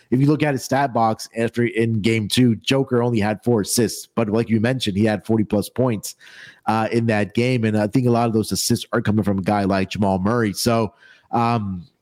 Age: 30-49